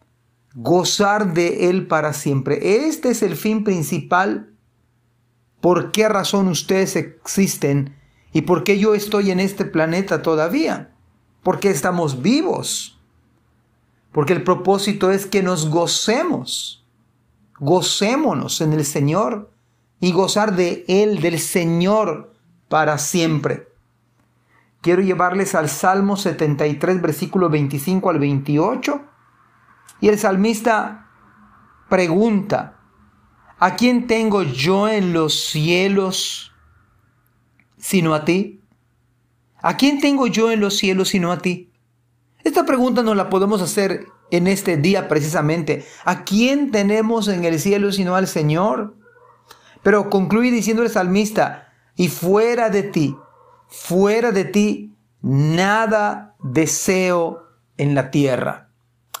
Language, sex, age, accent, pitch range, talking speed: Spanish, male, 40-59, Mexican, 155-205 Hz, 115 wpm